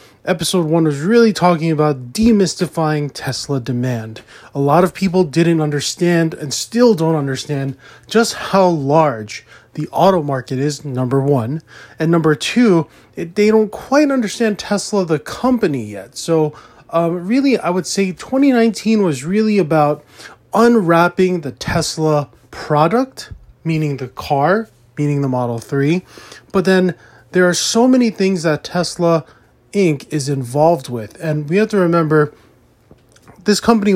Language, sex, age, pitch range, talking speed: English, male, 20-39, 145-185 Hz, 140 wpm